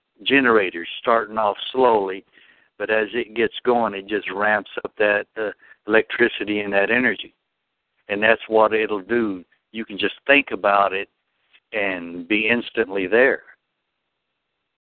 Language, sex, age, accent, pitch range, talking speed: English, male, 60-79, American, 100-120 Hz, 135 wpm